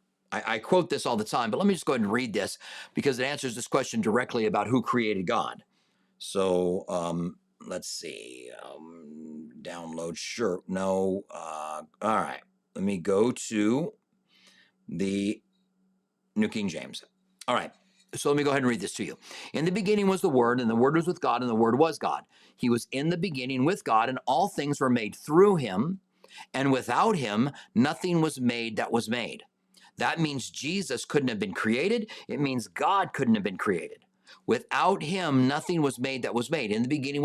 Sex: male